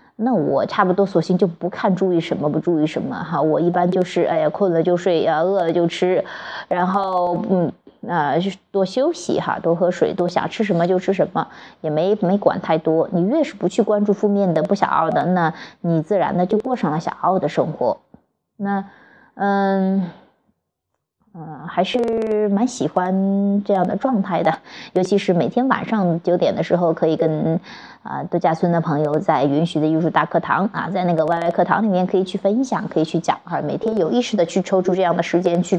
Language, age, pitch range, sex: Chinese, 20-39, 170-205 Hz, female